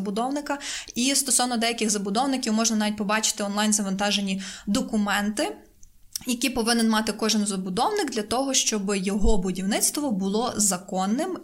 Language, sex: Ukrainian, female